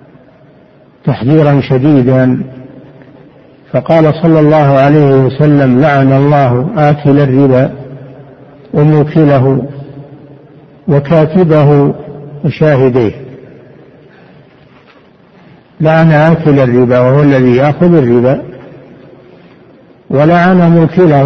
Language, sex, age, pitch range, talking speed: Arabic, male, 60-79, 135-155 Hz, 65 wpm